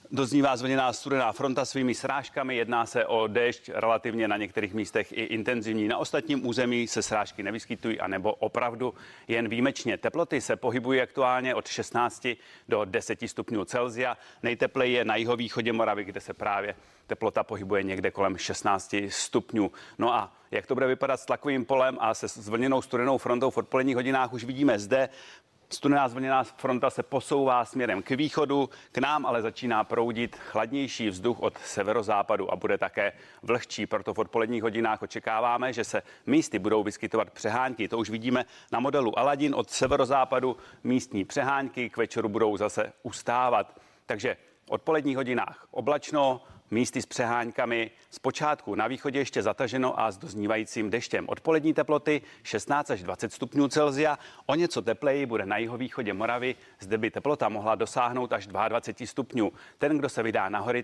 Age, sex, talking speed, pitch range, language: 30-49, male, 160 wpm, 110-135 Hz, Czech